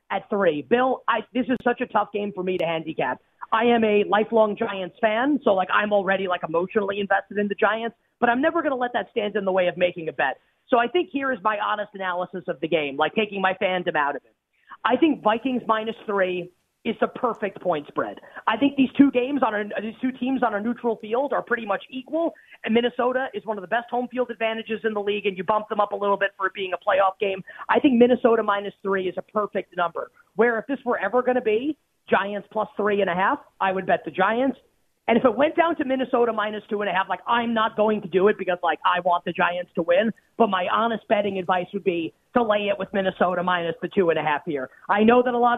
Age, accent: 30-49, American